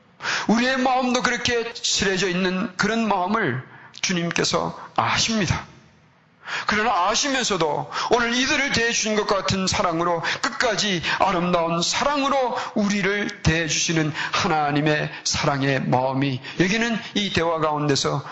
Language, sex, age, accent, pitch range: Korean, male, 40-59, native, 130-180 Hz